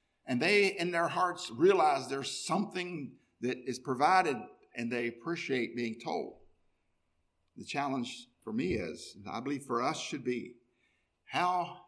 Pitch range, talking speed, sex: 120-170 Hz, 145 wpm, male